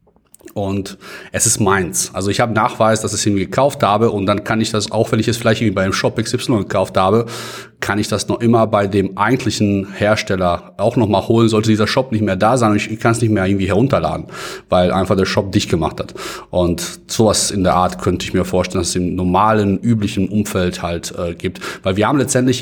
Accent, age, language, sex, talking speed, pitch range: German, 30-49, German, male, 230 wpm, 100-120 Hz